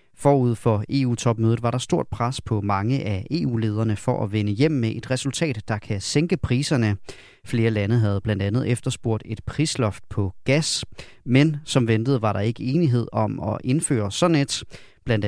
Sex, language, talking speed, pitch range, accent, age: male, Danish, 175 wpm, 110-140 Hz, native, 30-49